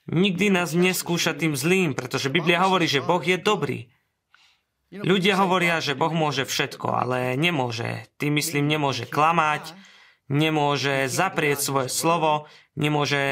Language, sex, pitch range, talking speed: Slovak, male, 140-175 Hz, 130 wpm